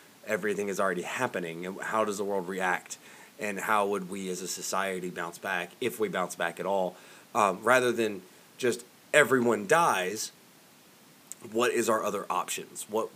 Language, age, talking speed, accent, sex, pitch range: English, 30-49, 170 wpm, American, male, 90-110 Hz